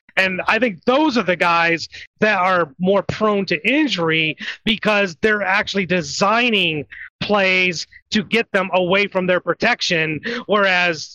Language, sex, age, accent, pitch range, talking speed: English, male, 30-49, American, 180-235 Hz, 140 wpm